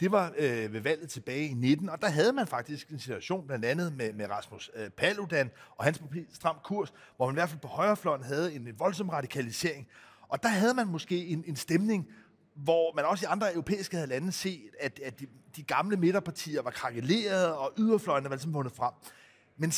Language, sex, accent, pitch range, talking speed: Danish, male, native, 145-195 Hz, 210 wpm